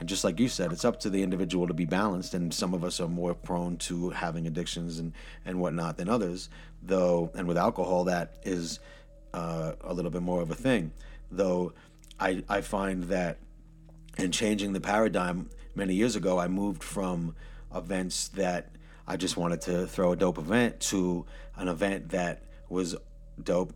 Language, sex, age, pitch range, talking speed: English, male, 40-59, 85-105 Hz, 185 wpm